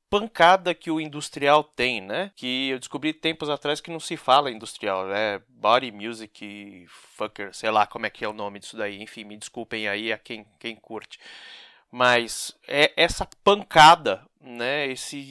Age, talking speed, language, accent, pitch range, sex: 30-49, 175 wpm, Portuguese, Brazilian, 125-185 Hz, male